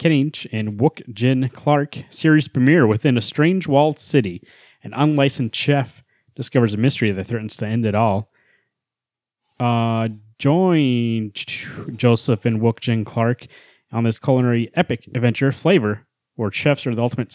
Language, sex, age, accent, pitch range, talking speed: English, male, 30-49, American, 115-140 Hz, 140 wpm